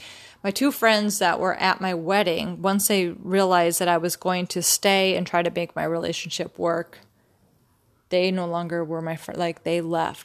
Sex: female